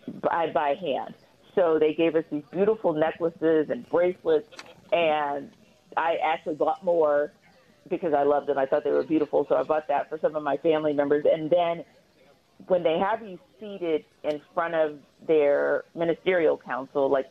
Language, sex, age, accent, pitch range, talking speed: English, female, 40-59, American, 150-195 Hz, 175 wpm